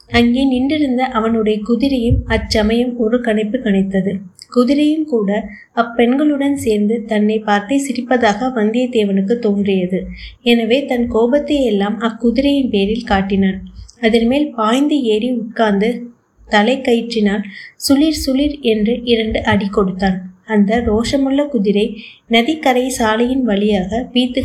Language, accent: Tamil, native